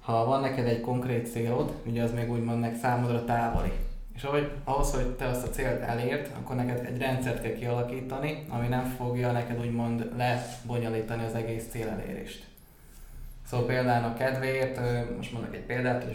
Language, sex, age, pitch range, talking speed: Hungarian, male, 20-39, 115-130 Hz, 170 wpm